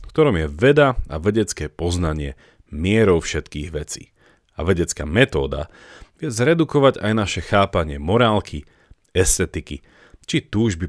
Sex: male